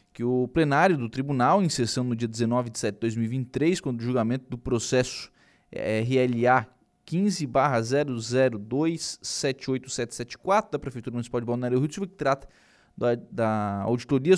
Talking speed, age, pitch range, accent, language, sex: 135 wpm, 20-39, 120-145 Hz, Brazilian, Portuguese, male